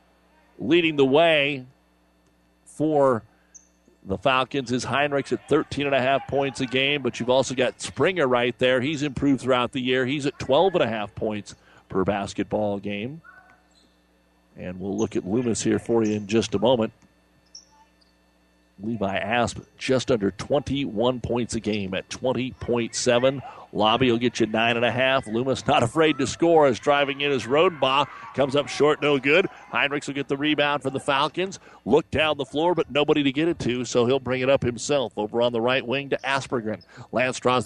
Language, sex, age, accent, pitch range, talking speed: English, male, 40-59, American, 110-140 Hz, 175 wpm